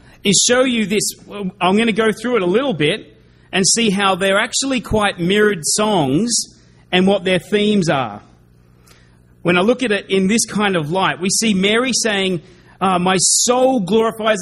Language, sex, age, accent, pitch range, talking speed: English, male, 30-49, Australian, 170-215 Hz, 185 wpm